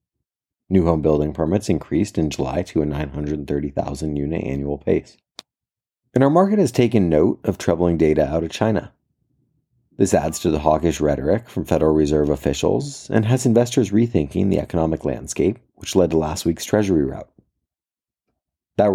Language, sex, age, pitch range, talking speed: English, male, 30-49, 70-100 Hz, 155 wpm